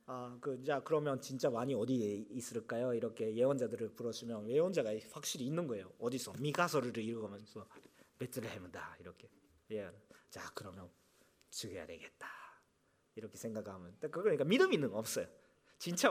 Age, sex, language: 40-59, male, Korean